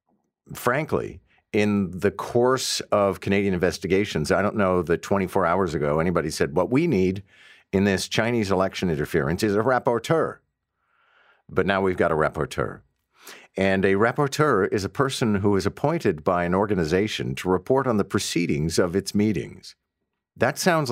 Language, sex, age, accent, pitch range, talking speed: English, male, 50-69, American, 75-100 Hz, 160 wpm